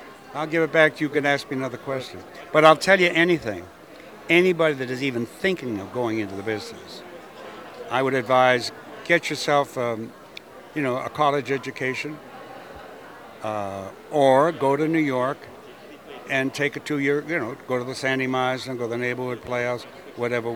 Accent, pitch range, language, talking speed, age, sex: American, 130-160 Hz, English, 180 wpm, 60-79, male